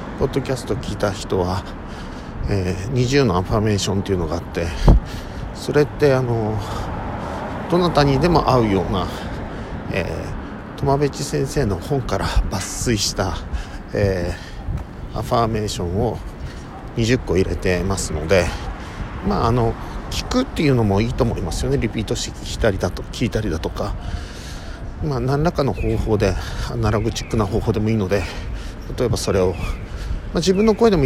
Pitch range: 95-120 Hz